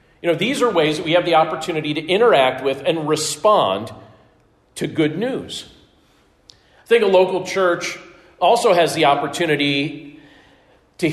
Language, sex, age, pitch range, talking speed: English, male, 40-59, 150-190 Hz, 150 wpm